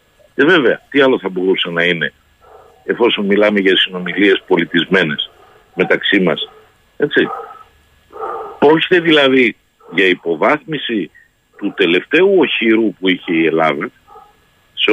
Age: 50-69